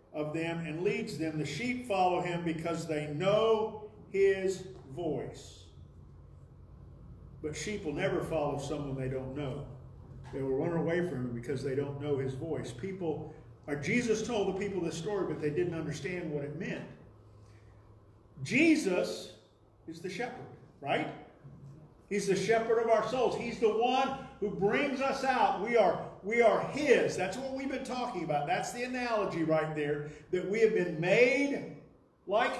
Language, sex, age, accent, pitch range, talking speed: English, male, 50-69, American, 145-215 Hz, 165 wpm